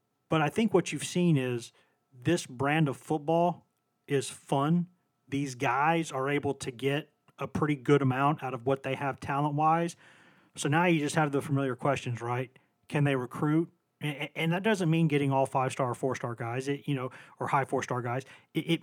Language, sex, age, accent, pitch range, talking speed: English, male, 40-59, American, 130-150 Hz, 185 wpm